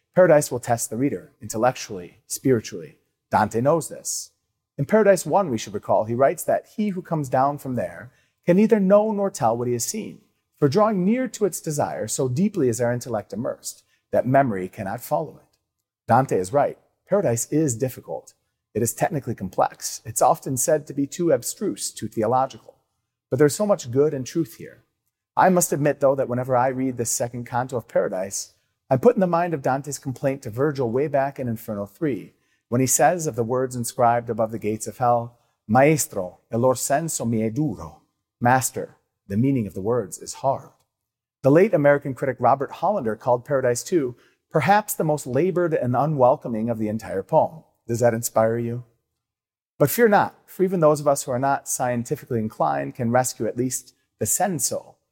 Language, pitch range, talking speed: English, 115-150 Hz, 190 wpm